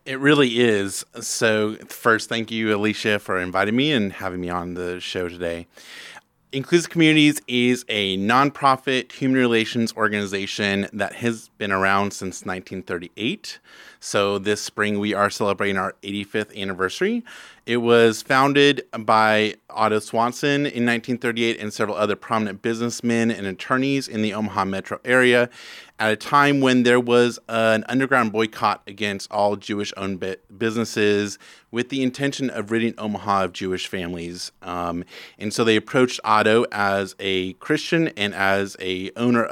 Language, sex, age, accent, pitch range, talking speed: English, male, 30-49, American, 100-120 Hz, 145 wpm